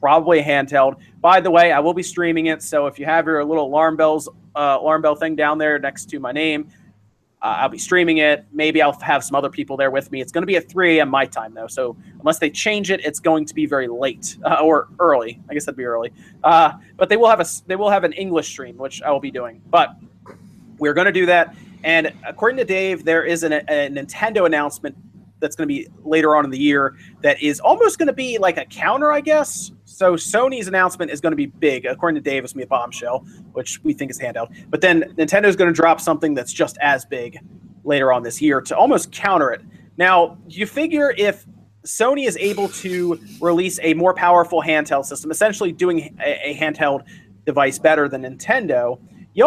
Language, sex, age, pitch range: English, male, 30-49, 145-185 Hz